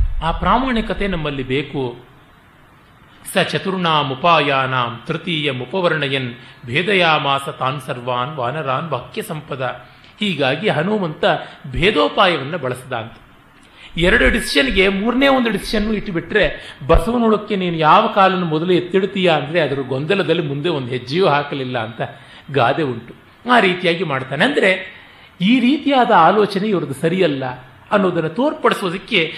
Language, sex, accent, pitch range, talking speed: Kannada, male, native, 140-195 Hz, 105 wpm